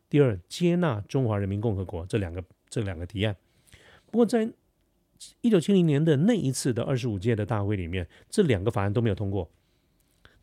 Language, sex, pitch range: Chinese, male, 100-130 Hz